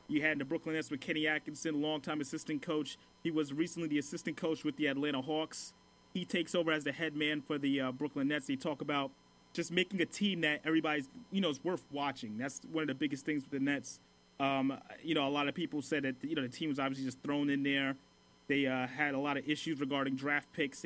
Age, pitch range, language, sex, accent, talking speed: 30-49, 140-165 Hz, English, male, American, 250 wpm